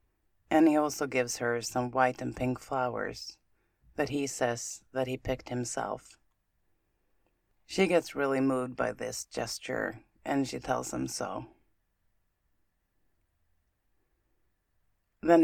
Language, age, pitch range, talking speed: English, 30-49, 105-140 Hz, 115 wpm